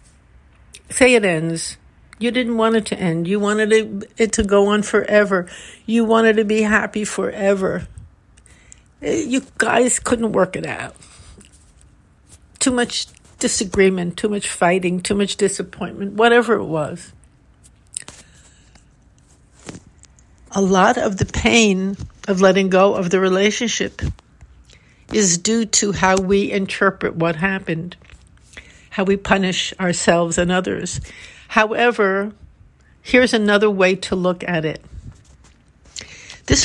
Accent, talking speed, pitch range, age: American, 120 wpm, 185-220 Hz, 60-79